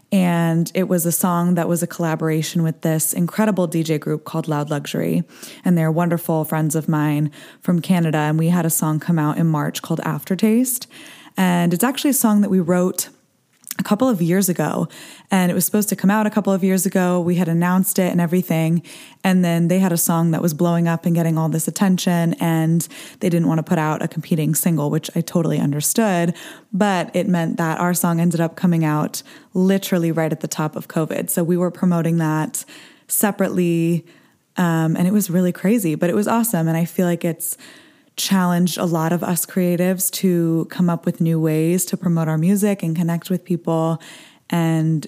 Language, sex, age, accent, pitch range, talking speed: English, female, 20-39, American, 165-185 Hz, 205 wpm